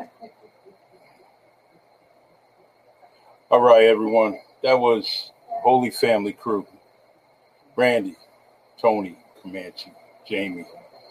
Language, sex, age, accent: English, male, 50-69, American